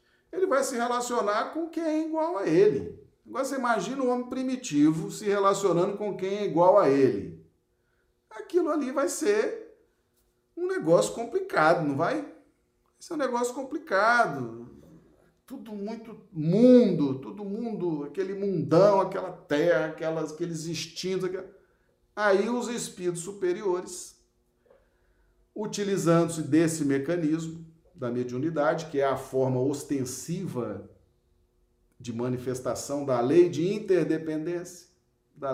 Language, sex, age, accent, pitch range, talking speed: Portuguese, male, 40-59, Brazilian, 135-210 Hz, 120 wpm